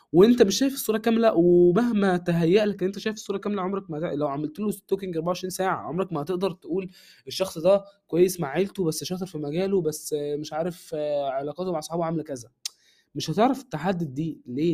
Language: Arabic